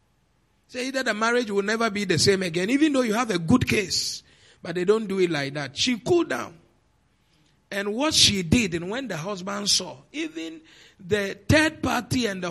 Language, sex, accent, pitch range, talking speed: English, male, Nigerian, 180-260 Hz, 205 wpm